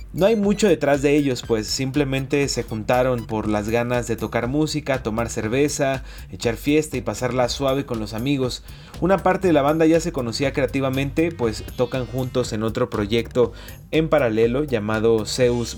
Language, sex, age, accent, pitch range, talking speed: English, male, 30-49, Mexican, 110-140 Hz, 170 wpm